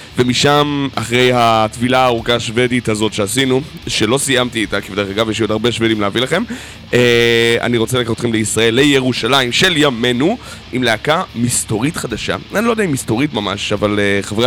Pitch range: 110-135 Hz